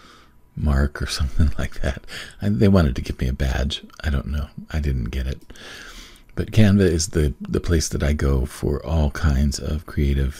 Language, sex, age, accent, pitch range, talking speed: English, male, 50-69, American, 70-85 Hz, 190 wpm